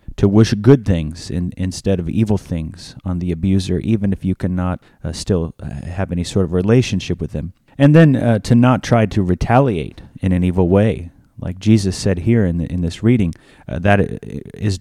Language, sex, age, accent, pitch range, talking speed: English, male, 30-49, American, 90-110 Hz, 200 wpm